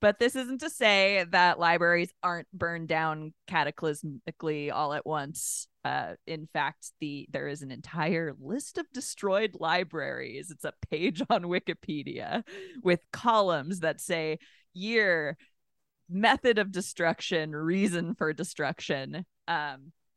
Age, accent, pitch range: 20-39, American, 145-180 Hz